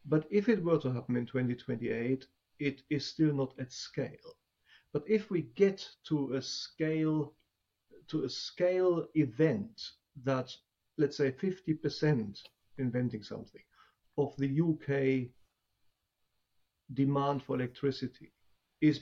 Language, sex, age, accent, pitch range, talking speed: English, male, 50-69, German, 125-150 Hz, 120 wpm